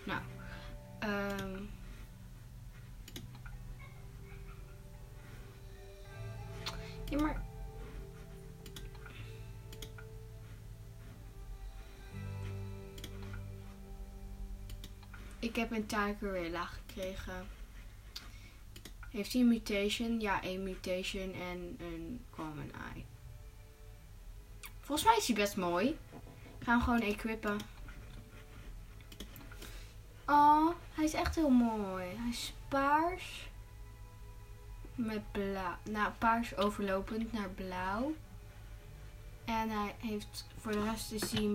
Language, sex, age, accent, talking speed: Dutch, female, 20-39, Dutch, 80 wpm